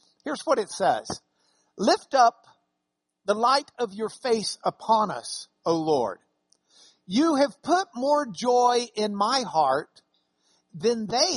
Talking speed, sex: 130 wpm, male